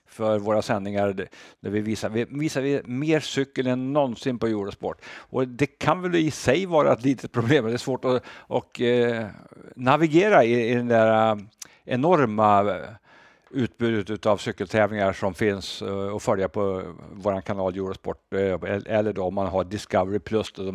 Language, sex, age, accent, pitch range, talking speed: Swedish, male, 60-79, Norwegian, 100-120 Hz, 160 wpm